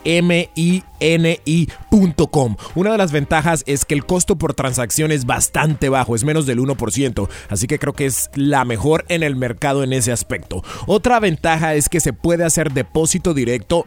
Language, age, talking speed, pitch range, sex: English, 30-49, 175 wpm, 130-170 Hz, male